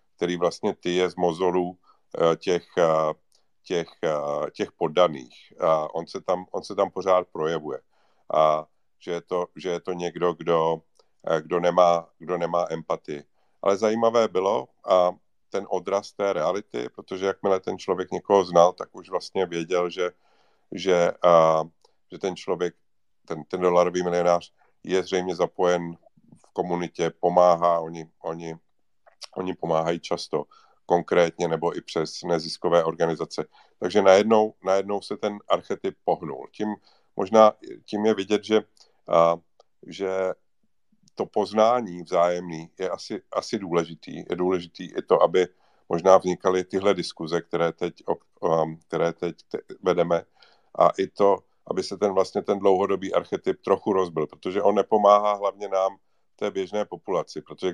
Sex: male